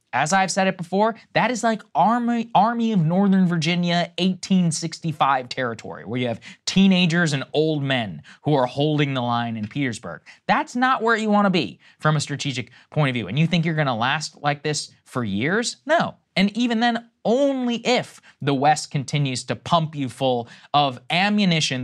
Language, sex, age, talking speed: English, male, 20-39, 185 wpm